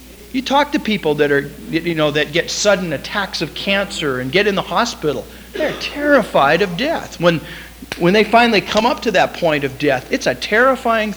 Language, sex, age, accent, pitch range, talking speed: English, male, 50-69, American, 150-215 Hz, 200 wpm